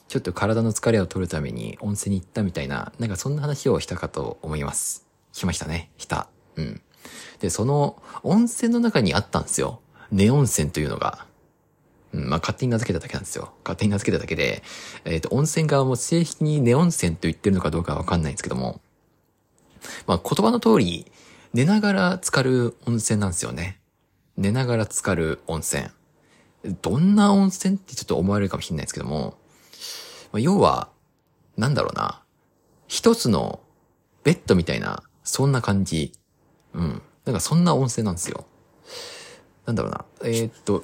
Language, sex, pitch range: Japanese, male, 90-145 Hz